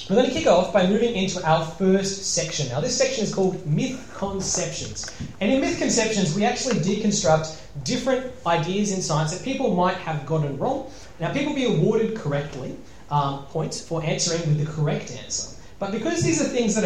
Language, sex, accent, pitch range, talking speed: English, male, Australian, 145-205 Hz, 195 wpm